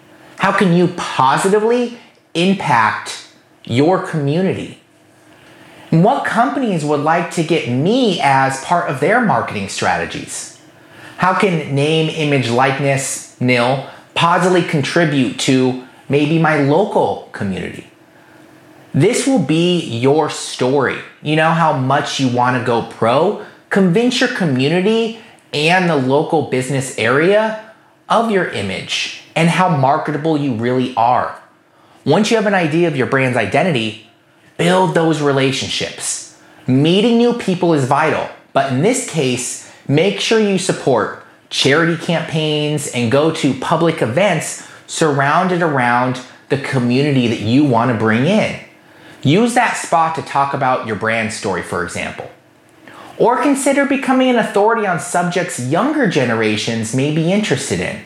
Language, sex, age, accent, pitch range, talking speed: English, male, 30-49, American, 135-185 Hz, 135 wpm